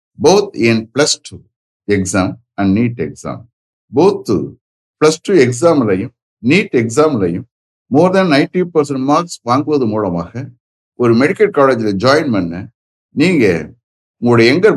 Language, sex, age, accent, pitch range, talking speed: English, male, 60-79, Indian, 110-155 Hz, 120 wpm